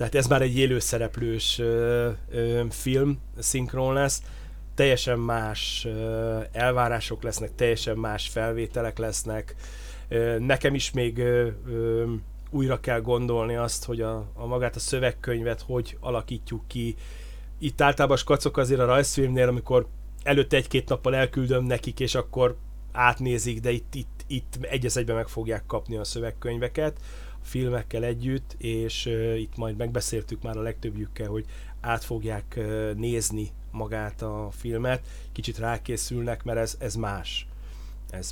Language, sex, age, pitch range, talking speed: Hungarian, male, 30-49, 115-130 Hz, 130 wpm